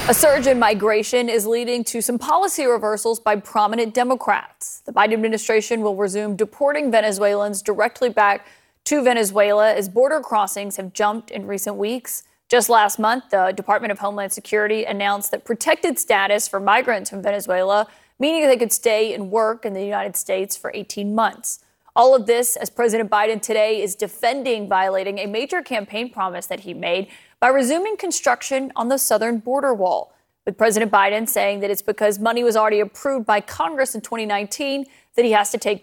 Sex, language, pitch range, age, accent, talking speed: female, English, 205-240 Hz, 30-49, American, 180 wpm